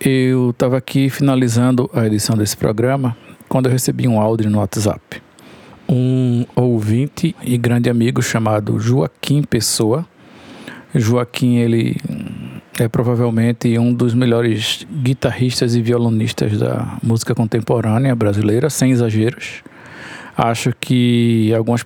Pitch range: 115-135 Hz